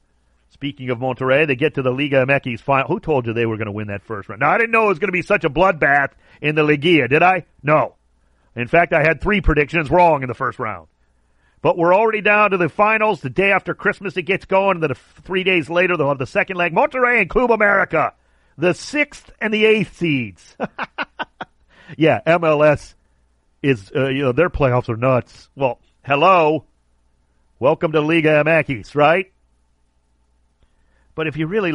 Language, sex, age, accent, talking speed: English, male, 40-59, American, 195 wpm